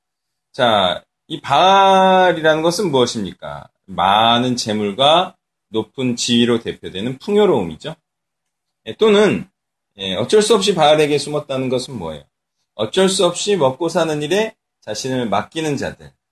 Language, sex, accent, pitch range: Korean, male, native, 120-175 Hz